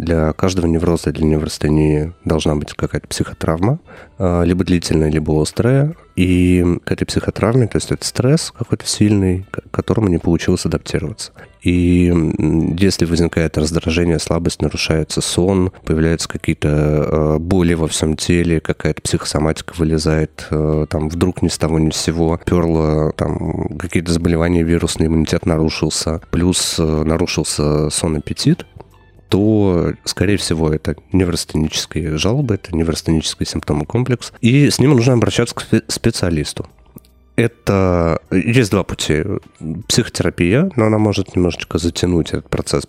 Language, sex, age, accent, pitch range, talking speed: Russian, male, 30-49, native, 80-95 Hz, 125 wpm